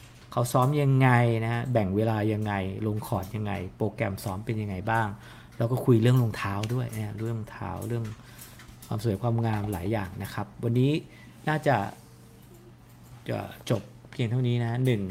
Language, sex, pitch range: English, male, 105-125 Hz